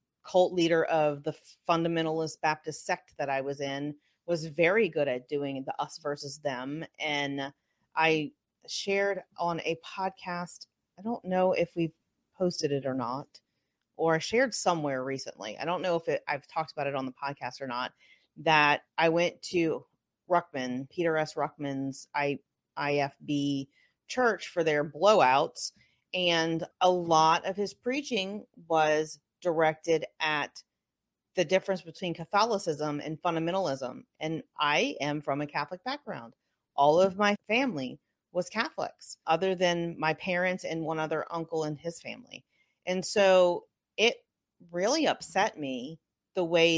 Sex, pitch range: female, 145-190 Hz